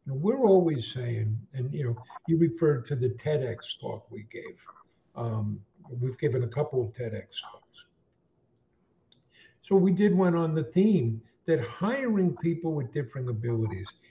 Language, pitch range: English, 120-170 Hz